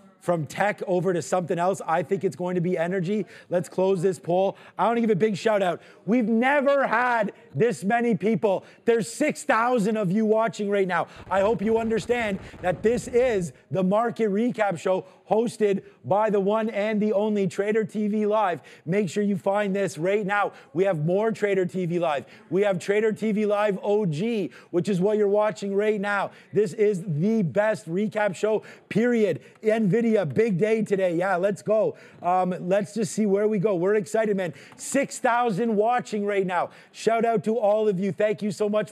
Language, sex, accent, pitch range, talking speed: English, male, American, 195-220 Hz, 190 wpm